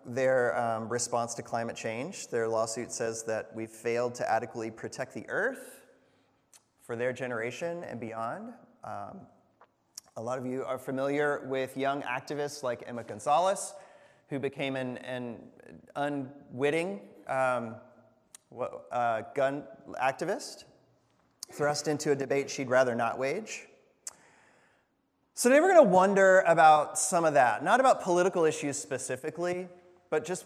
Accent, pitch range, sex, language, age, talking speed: American, 130-185 Hz, male, English, 30-49, 135 wpm